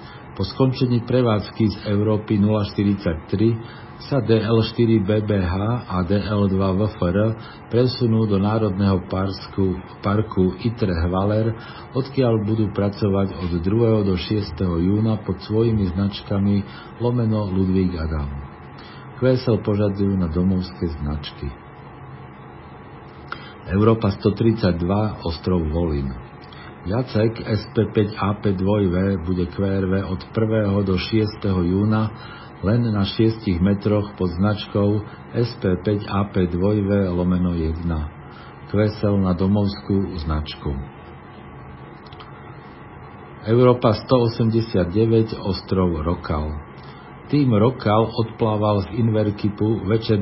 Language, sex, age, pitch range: Slovak, male, 50-69, 95-110 Hz